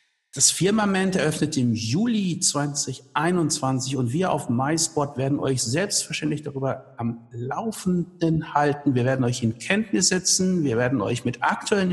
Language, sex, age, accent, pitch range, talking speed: German, male, 60-79, German, 135-175 Hz, 140 wpm